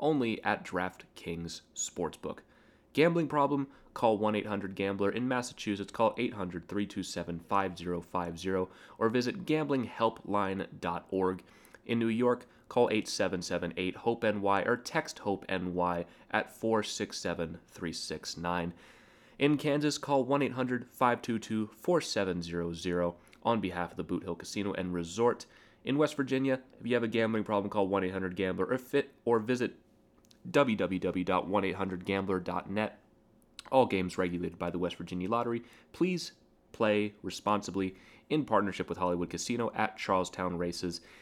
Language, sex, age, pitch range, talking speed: English, male, 30-49, 90-120 Hz, 110 wpm